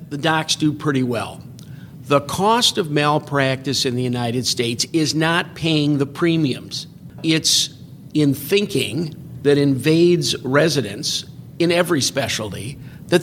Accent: American